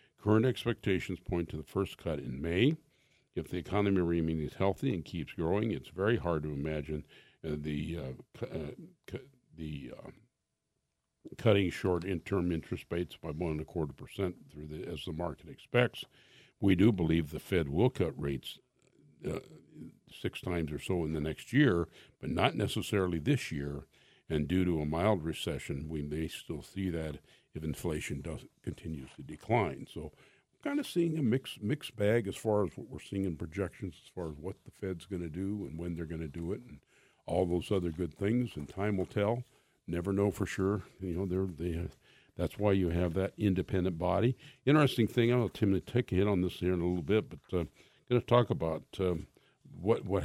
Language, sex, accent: English, male, American